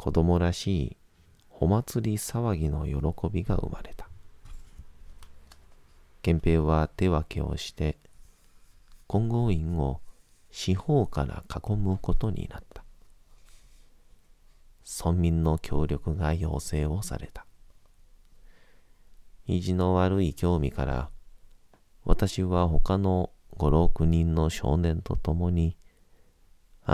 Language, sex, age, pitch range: Japanese, male, 40-59, 75-95 Hz